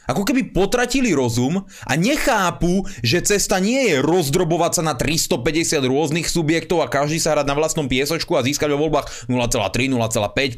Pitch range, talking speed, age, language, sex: 130-185 Hz, 165 wpm, 30-49, Slovak, male